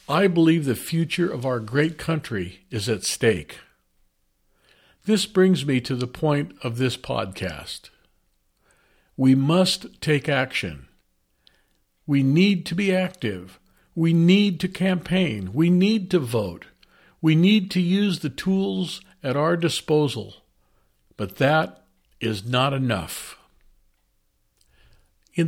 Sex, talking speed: male, 120 wpm